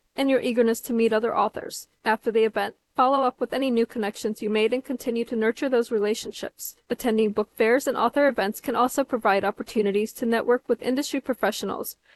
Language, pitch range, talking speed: English, 220-255 Hz, 190 wpm